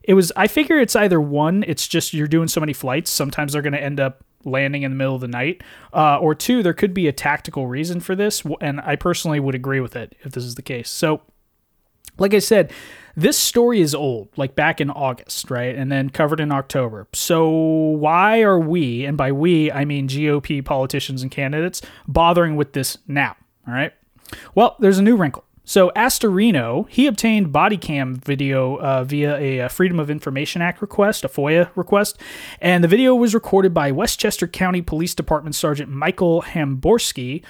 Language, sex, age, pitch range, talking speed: English, male, 20-39, 135-180 Hz, 195 wpm